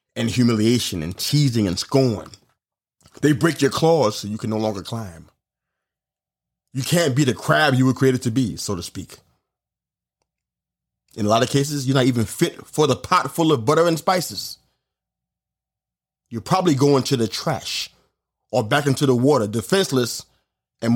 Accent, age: American, 30-49